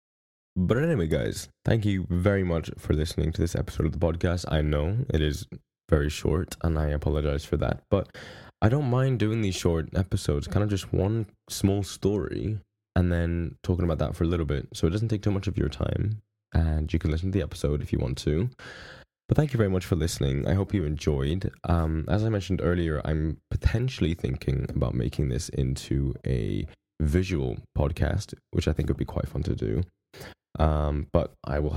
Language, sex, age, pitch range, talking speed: English, male, 10-29, 75-100 Hz, 205 wpm